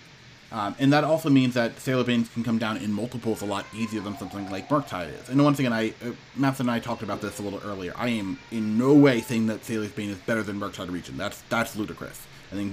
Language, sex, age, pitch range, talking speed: English, male, 30-49, 100-120 Hz, 250 wpm